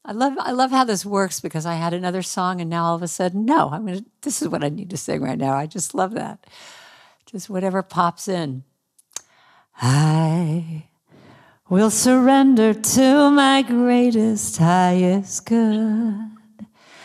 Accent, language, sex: American, English, female